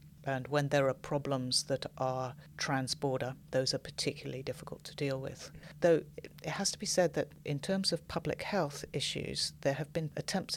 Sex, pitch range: female, 135-155 Hz